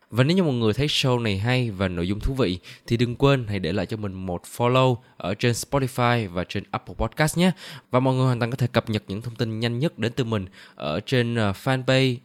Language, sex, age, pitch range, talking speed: Vietnamese, male, 20-39, 105-135 Hz, 255 wpm